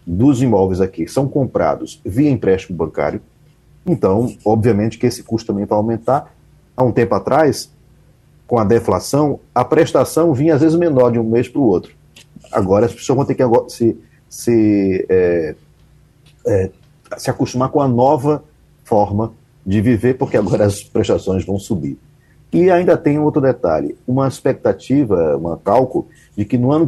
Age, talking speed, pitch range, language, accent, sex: 50-69, 160 wpm, 105-145 Hz, Portuguese, Brazilian, male